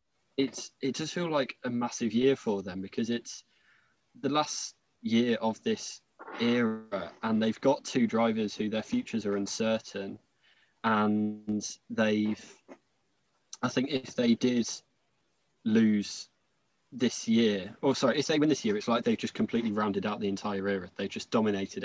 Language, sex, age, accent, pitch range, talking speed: English, male, 20-39, British, 100-120 Hz, 155 wpm